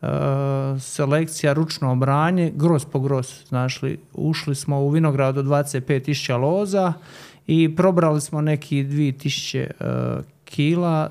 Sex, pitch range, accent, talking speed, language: male, 135-155 Hz, Serbian, 125 wpm, Croatian